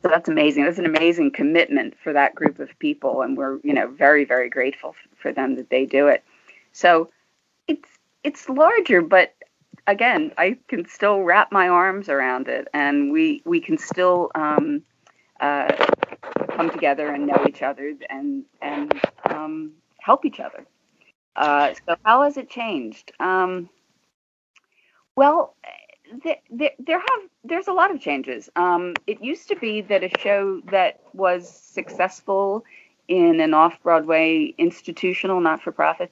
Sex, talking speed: female, 150 wpm